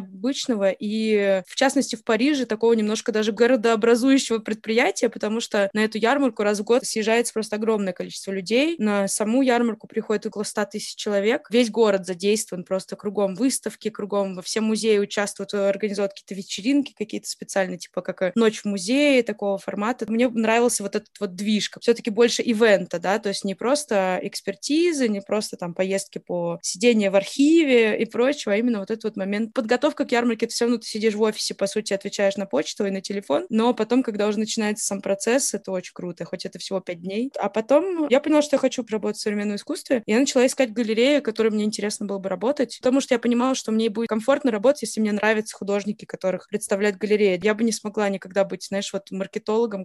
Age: 20-39